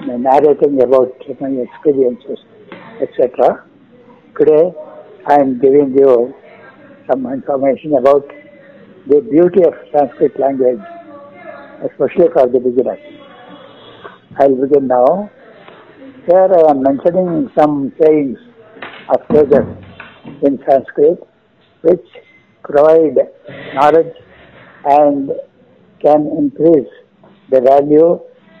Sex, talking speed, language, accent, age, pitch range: male, 90 wpm, English, Indian, 60-79, 145-235 Hz